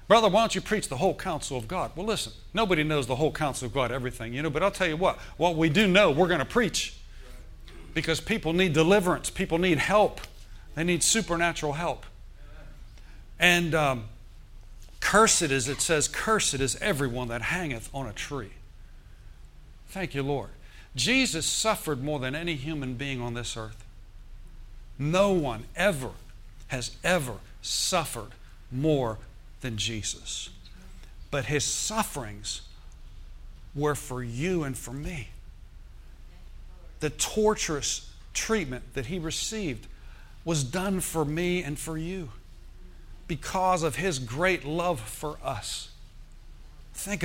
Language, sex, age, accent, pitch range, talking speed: English, male, 60-79, American, 110-170 Hz, 140 wpm